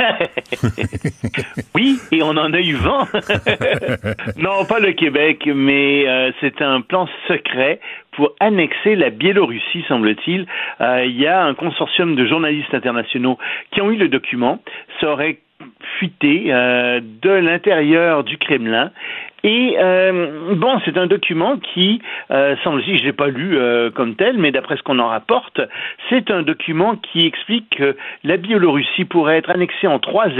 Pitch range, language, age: 135-185 Hz, French, 50-69